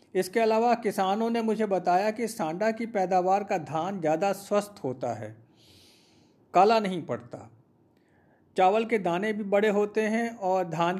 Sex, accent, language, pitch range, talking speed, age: male, native, Hindi, 170-215 Hz, 155 wpm, 50-69